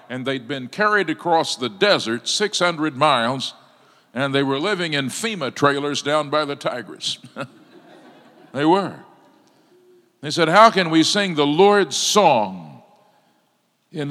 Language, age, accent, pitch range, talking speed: English, 50-69, American, 125-165 Hz, 135 wpm